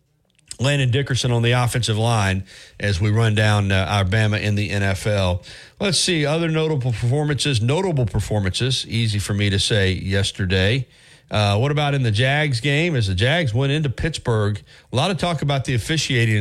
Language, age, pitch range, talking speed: English, 40-59, 105-140 Hz, 175 wpm